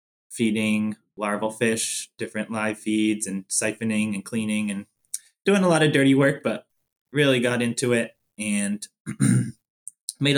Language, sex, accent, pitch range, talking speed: English, male, American, 110-125 Hz, 140 wpm